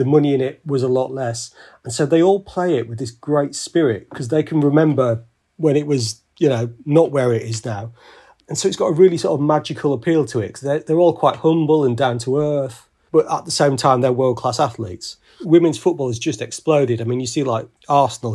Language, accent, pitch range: English, British, 120-150 Hz